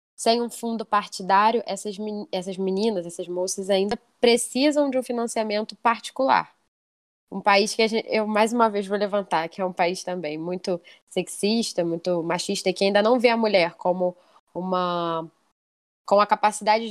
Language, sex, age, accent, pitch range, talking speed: Portuguese, female, 10-29, Brazilian, 185-220 Hz, 165 wpm